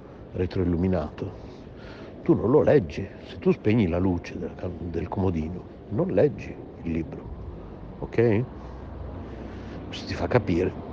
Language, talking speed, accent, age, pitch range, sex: Italian, 115 wpm, native, 60-79, 95-120 Hz, male